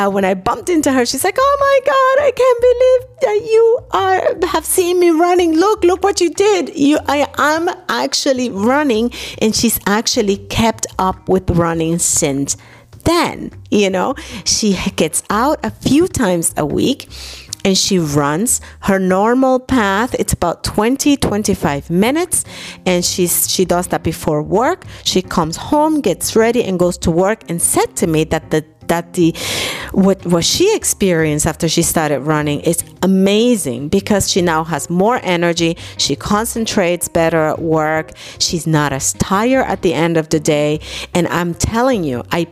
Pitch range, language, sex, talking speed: 165-260 Hz, English, female, 170 wpm